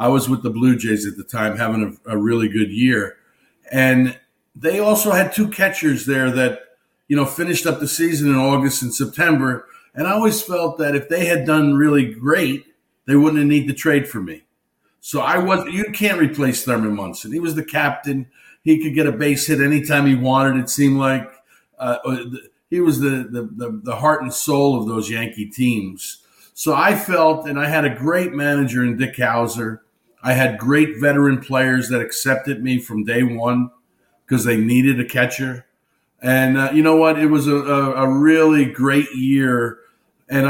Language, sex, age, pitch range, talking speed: English, male, 50-69, 125-150 Hz, 195 wpm